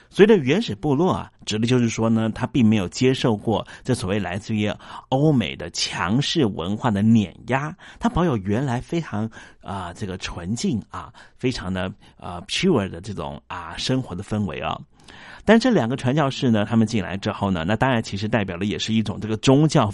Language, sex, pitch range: Chinese, male, 105-130 Hz